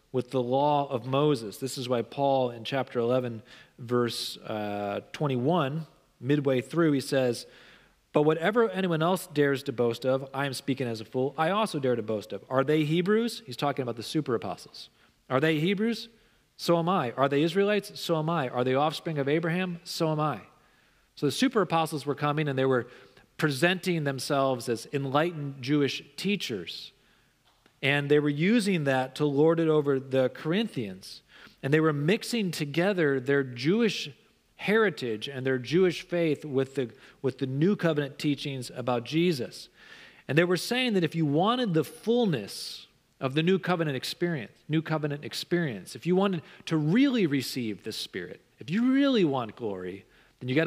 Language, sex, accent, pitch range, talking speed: English, male, American, 130-175 Hz, 175 wpm